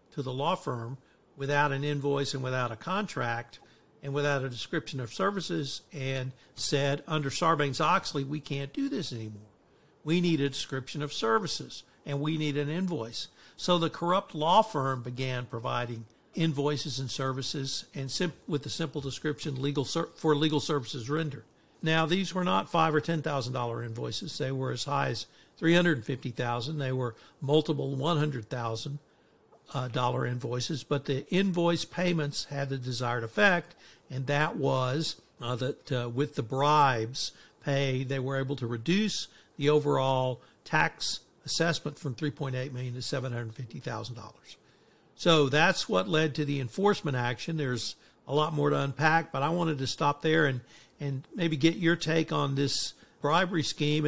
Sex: male